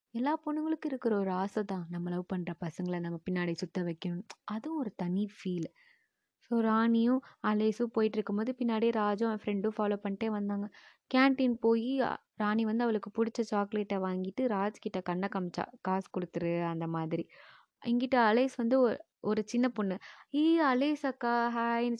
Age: 20-39